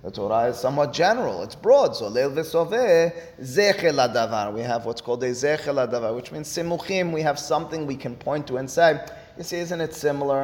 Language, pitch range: English, 115-145 Hz